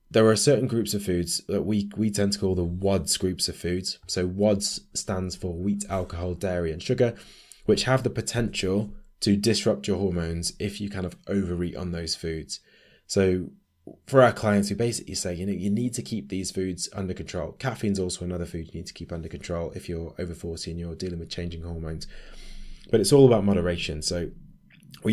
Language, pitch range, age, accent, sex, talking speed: English, 85-105 Hz, 20-39, British, male, 210 wpm